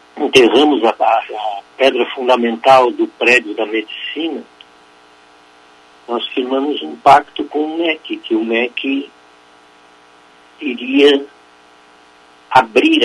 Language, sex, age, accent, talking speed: Portuguese, male, 60-79, Brazilian, 95 wpm